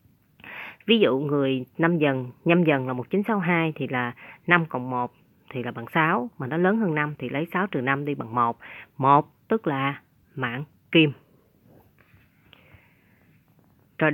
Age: 20-39